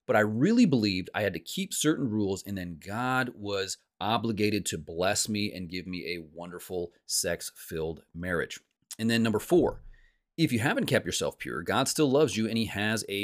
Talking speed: 200 wpm